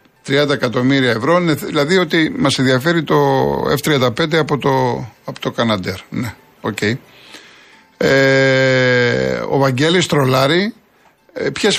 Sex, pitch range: male, 115-145 Hz